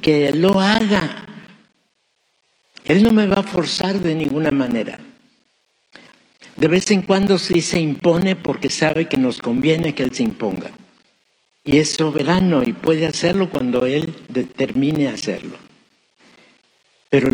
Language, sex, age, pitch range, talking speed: Spanish, male, 60-79, 140-185 Hz, 135 wpm